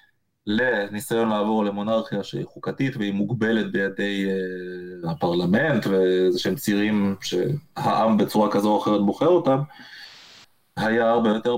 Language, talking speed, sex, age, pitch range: Hebrew, 120 wpm, male, 20-39, 105-120 Hz